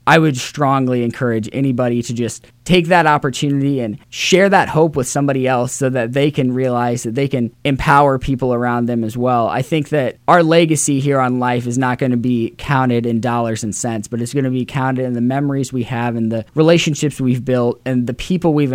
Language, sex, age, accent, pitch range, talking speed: English, male, 10-29, American, 120-140 Hz, 220 wpm